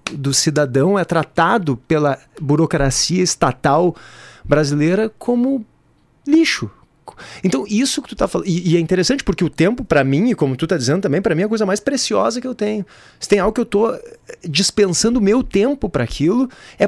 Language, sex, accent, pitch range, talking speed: Portuguese, male, Brazilian, 140-200 Hz, 190 wpm